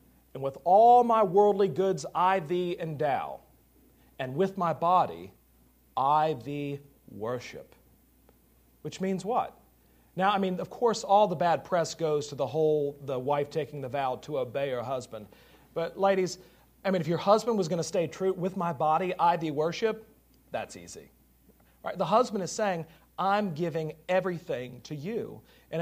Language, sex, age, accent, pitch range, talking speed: English, male, 40-59, American, 145-195 Hz, 165 wpm